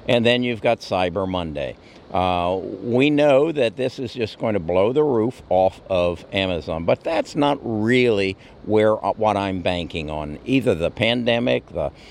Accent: American